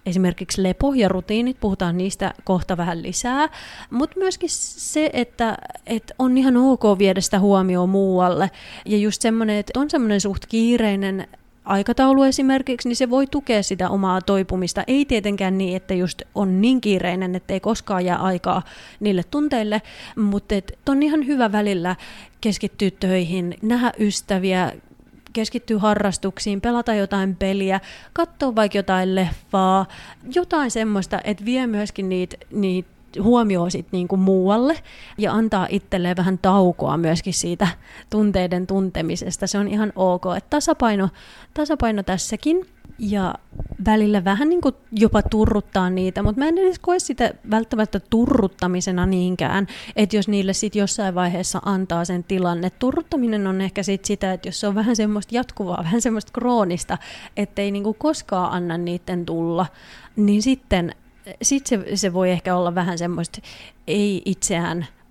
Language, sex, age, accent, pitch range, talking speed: Finnish, female, 30-49, native, 185-230 Hz, 140 wpm